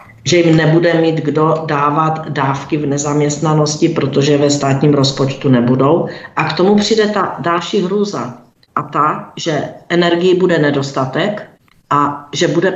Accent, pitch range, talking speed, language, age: native, 150-185 Hz, 140 wpm, Czech, 40-59